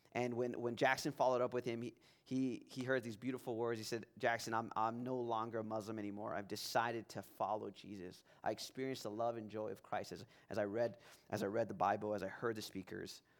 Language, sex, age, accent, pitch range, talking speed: English, male, 20-39, American, 110-135 Hz, 235 wpm